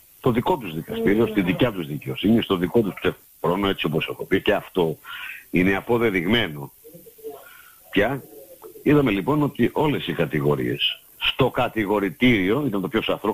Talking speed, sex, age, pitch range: 150 wpm, male, 60-79, 90-120 Hz